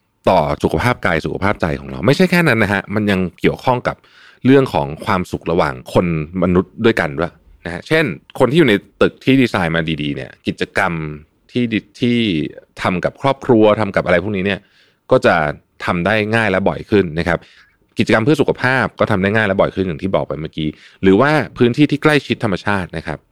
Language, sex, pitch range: Thai, male, 80-110 Hz